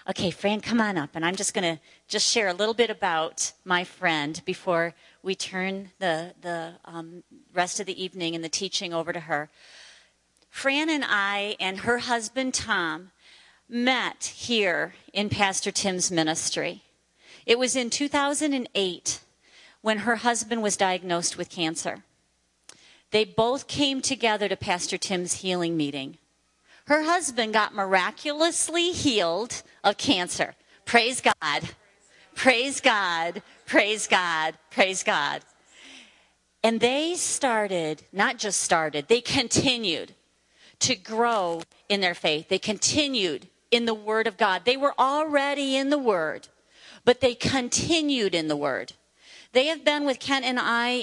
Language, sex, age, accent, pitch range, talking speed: English, female, 40-59, American, 180-245 Hz, 145 wpm